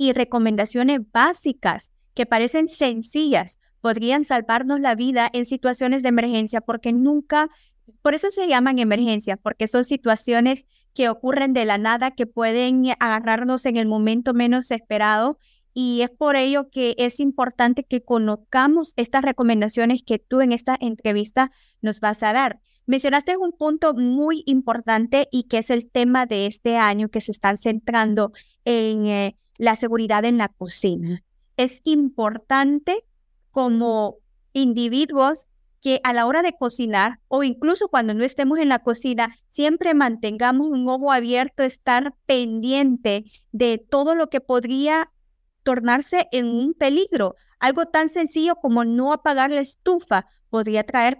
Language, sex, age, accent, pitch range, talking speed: English, female, 30-49, American, 230-275 Hz, 145 wpm